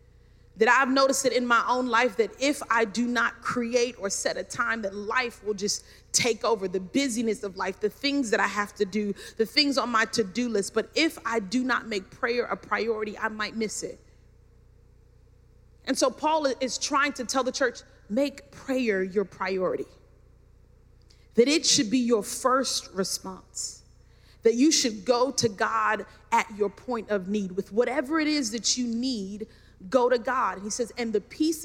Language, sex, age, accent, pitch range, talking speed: English, female, 30-49, American, 195-255 Hz, 190 wpm